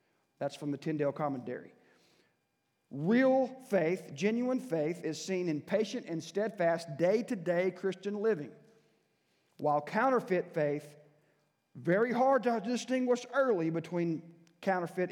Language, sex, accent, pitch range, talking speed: English, male, American, 160-200 Hz, 110 wpm